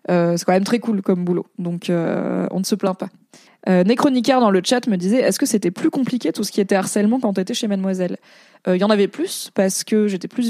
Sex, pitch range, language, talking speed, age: female, 175-215 Hz, French, 270 wpm, 20-39